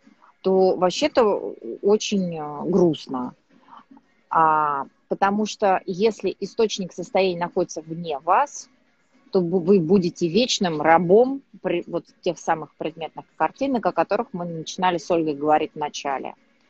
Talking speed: 115 wpm